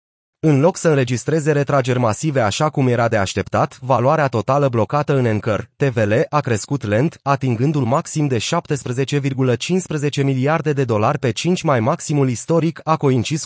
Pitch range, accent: 115-150 Hz, native